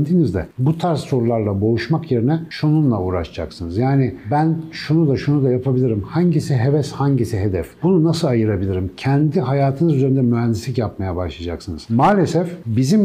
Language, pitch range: Turkish, 115-160 Hz